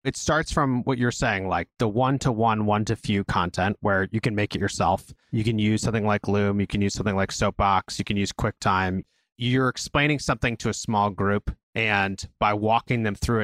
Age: 30-49